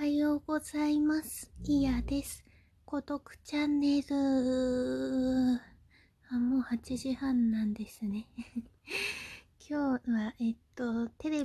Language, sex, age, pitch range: Japanese, female, 20-39, 210-245 Hz